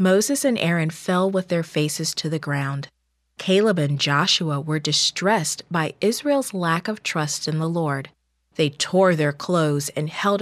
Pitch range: 145-190 Hz